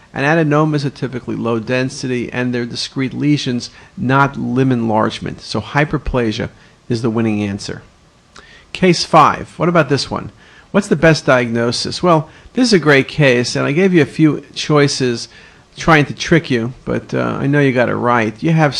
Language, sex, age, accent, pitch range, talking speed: English, male, 50-69, American, 120-150 Hz, 180 wpm